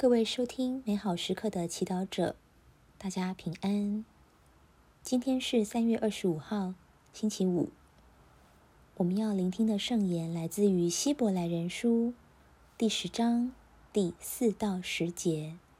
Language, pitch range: Chinese, 170-230 Hz